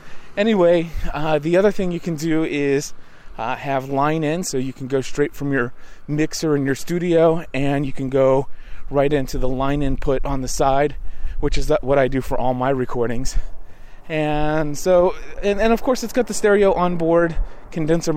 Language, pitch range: English, 135-175 Hz